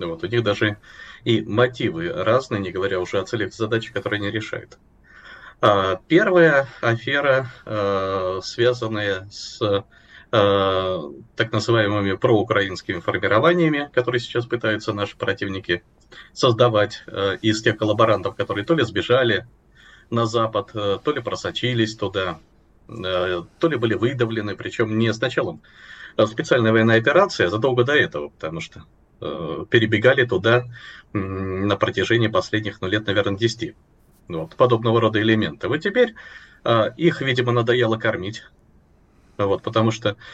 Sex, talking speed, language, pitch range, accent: male, 120 wpm, Russian, 100-120 Hz, native